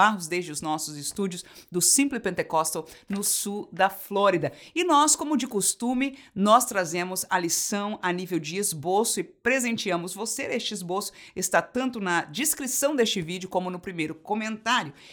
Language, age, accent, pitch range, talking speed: Portuguese, 50-69, Brazilian, 185-275 Hz, 155 wpm